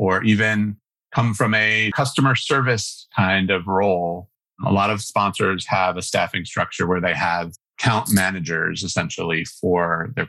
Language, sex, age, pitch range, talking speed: English, male, 30-49, 95-115 Hz, 150 wpm